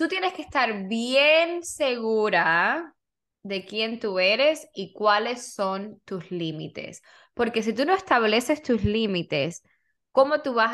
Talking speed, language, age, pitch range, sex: 140 wpm, Spanish, 10-29, 200-255 Hz, female